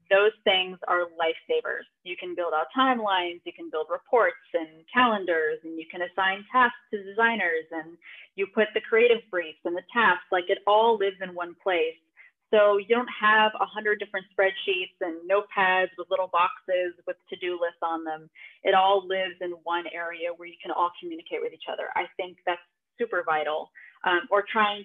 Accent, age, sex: American, 20-39, female